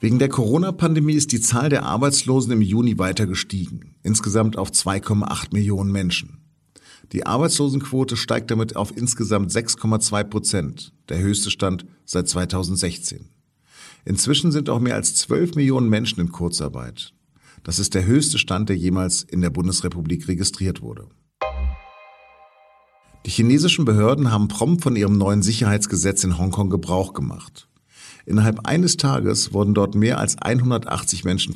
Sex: male